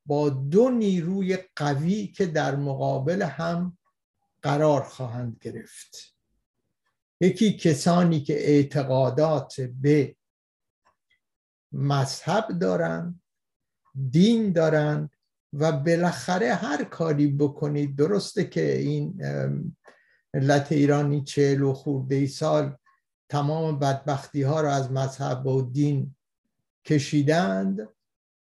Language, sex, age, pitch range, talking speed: Persian, male, 60-79, 140-185 Hz, 90 wpm